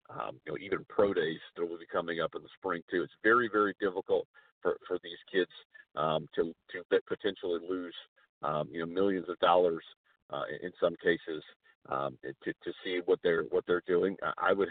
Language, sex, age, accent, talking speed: English, male, 50-69, American, 200 wpm